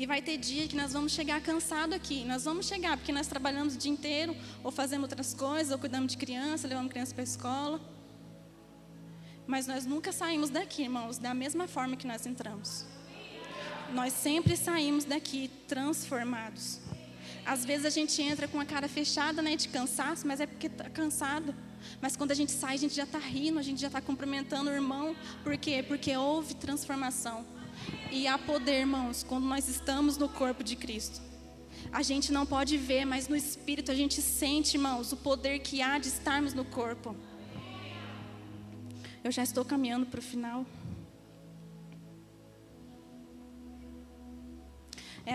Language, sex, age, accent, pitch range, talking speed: Portuguese, female, 20-39, Brazilian, 220-290 Hz, 170 wpm